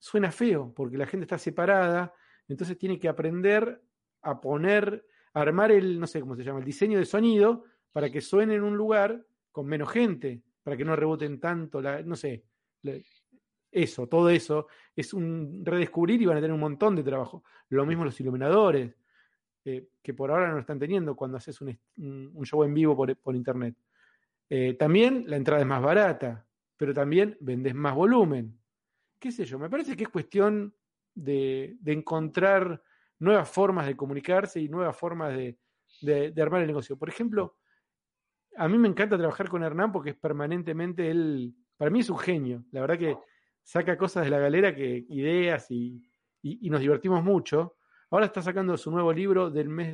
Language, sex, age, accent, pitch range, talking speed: Spanish, male, 40-59, Argentinian, 140-190 Hz, 190 wpm